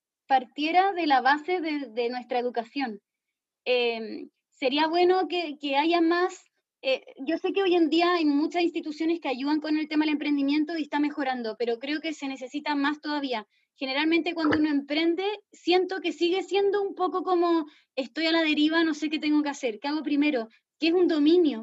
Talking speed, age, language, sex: 195 wpm, 20-39, Spanish, female